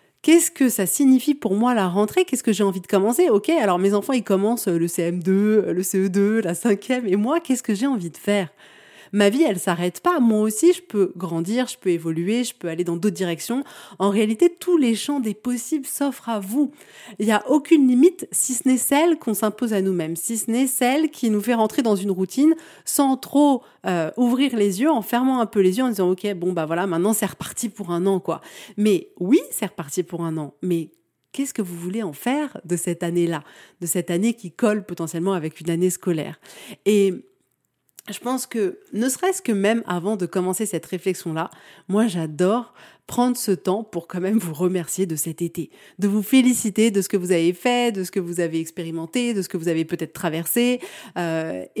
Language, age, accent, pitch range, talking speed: French, 30-49, French, 185-250 Hz, 220 wpm